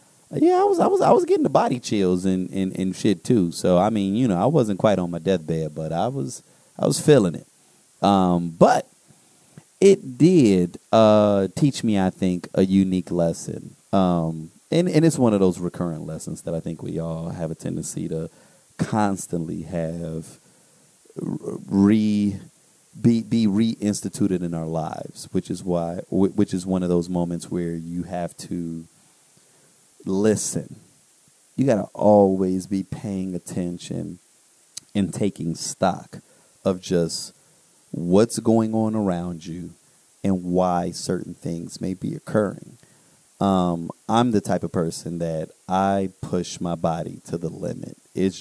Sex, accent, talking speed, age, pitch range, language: male, American, 155 wpm, 30-49, 85-100 Hz, English